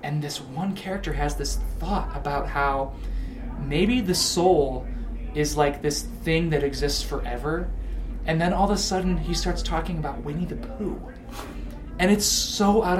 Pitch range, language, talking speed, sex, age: 140-175 Hz, English, 165 wpm, male, 30-49